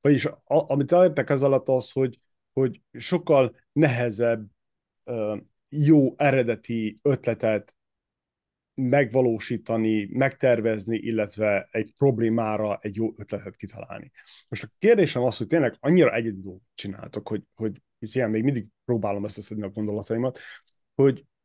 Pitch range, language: 110-145 Hz, Hungarian